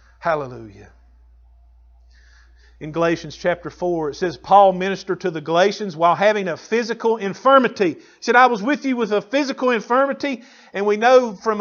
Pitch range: 130-210 Hz